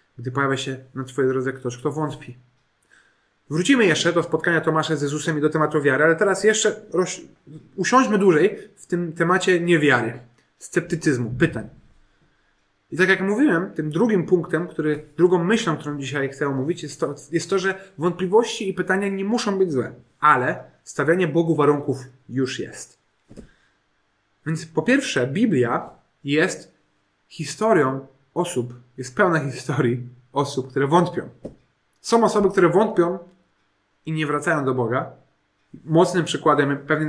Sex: male